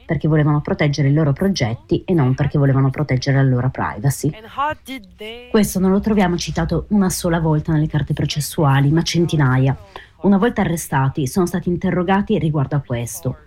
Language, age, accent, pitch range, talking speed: Italian, 30-49, native, 145-195 Hz, 160 wpm